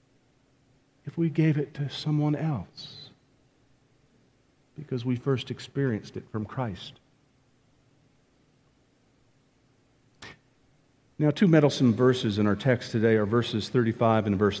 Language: English